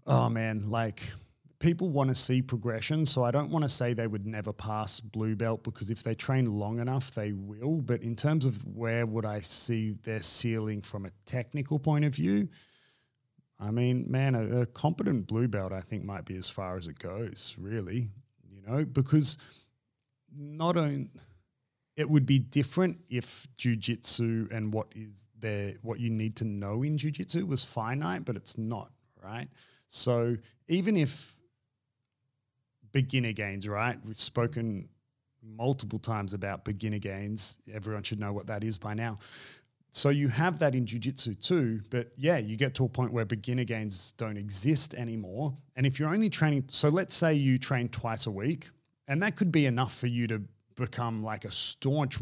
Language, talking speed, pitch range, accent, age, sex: English, 180 wpm, 110-135 Hz, Australian, 30-49, male